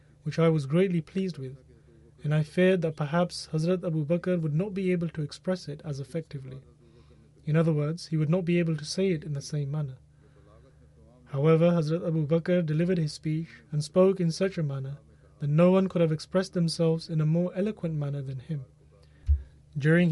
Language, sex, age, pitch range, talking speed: English, male, 30-49, 145-170 Hz, 195 wpm